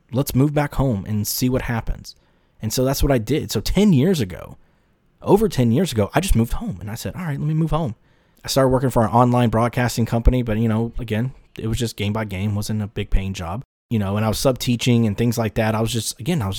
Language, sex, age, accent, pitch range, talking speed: English, male, 20-39, American, 105-140 Hz, 270 wpm